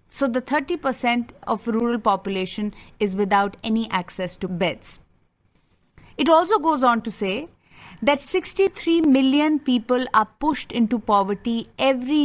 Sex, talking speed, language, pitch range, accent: female, 130 wpm, English, 215-275 Hz, Indian